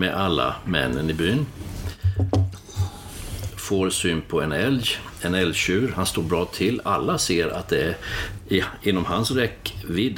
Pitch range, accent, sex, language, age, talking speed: 90-100 Hz, native, male, Swedish, 60-79, 145 wpm